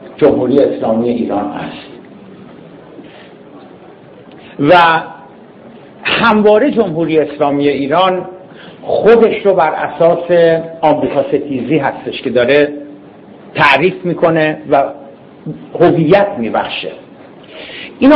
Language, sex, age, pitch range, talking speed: Persian, male, 60-79, 145-190 Hz, 75 wpm